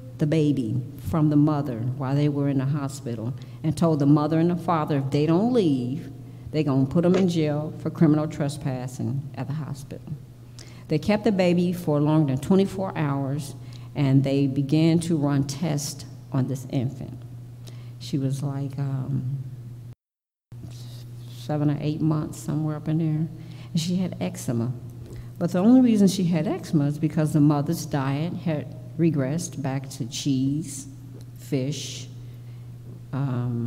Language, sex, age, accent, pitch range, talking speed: English, female, 50-69, American, 125-155 Hz, 155 wpm